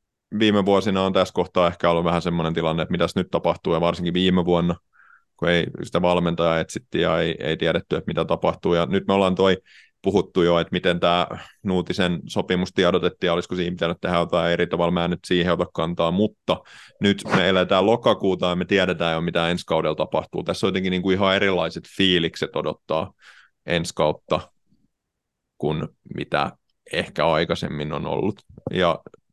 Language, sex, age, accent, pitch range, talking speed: Finnish, male, 30-49, native, 85-95 Hz, 170 wpm